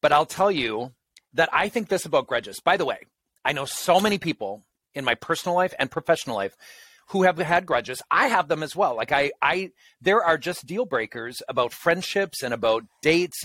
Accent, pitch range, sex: American, 120-175 Hz, male